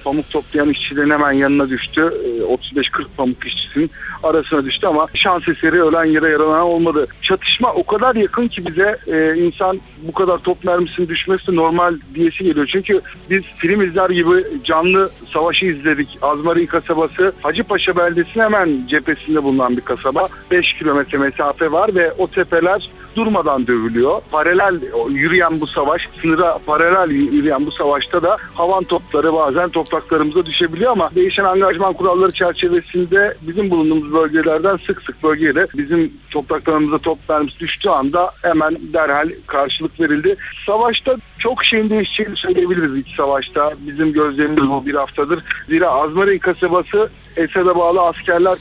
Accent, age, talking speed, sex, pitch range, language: native, 60-79, 140 wpm, male, 155-190 Hz, Turkish